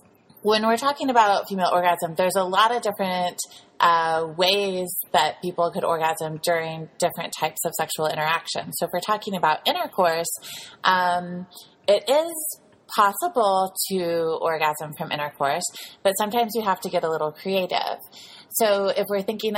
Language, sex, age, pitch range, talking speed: English, female, 20-39, 155-190 Hz, 155 wpm